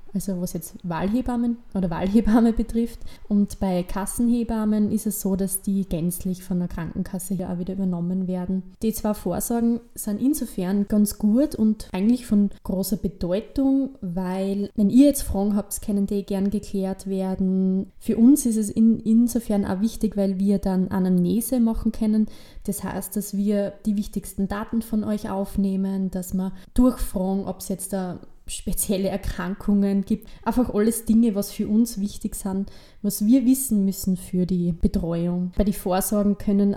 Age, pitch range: 20-39, 190-220 Hz